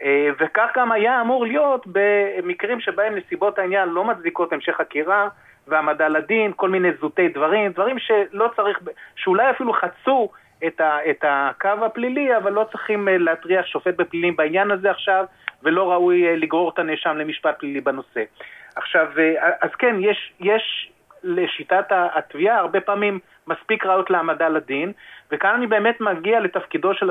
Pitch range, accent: 170-215 Hz, native